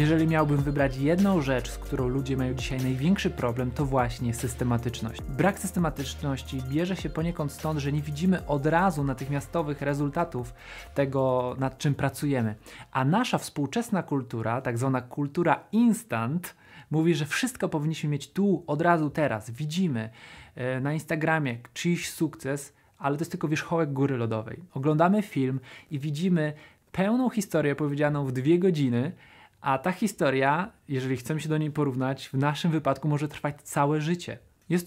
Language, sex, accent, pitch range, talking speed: Polish, male, native, 135-170 Hz, 150 wpm